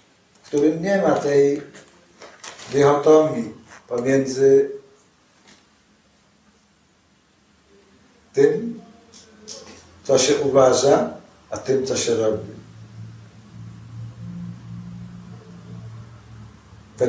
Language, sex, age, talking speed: Polish, male, 60-79, 60 wpm